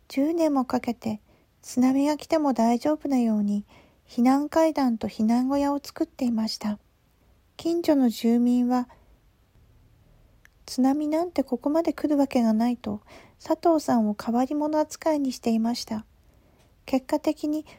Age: 40-59